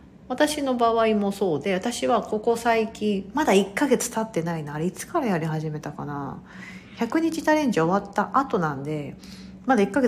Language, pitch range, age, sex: Japanese, 155-220 Hz, 40-59, female